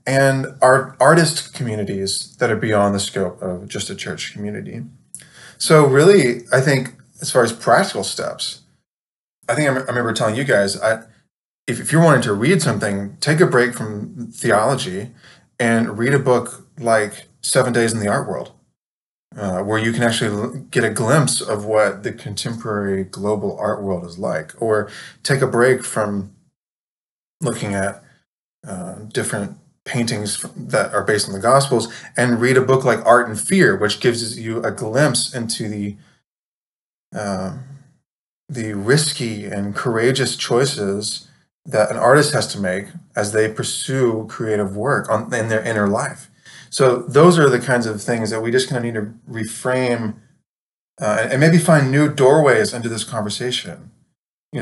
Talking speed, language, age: 165 wpm, English, 20-39